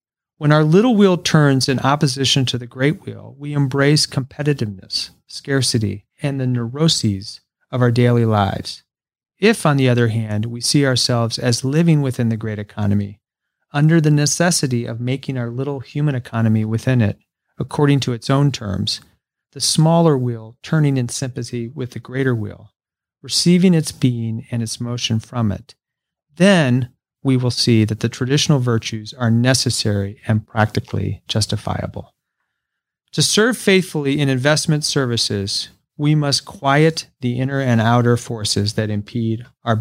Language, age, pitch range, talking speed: English, 40-59, 115-145 Hz, 150 wpm